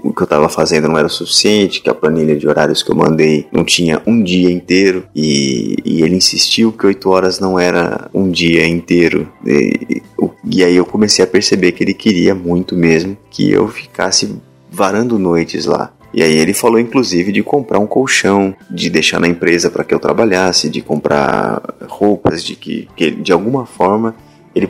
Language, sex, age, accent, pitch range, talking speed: Portuguese, male, 20-39, Brazilian, 85-95 Hz, 190 wpm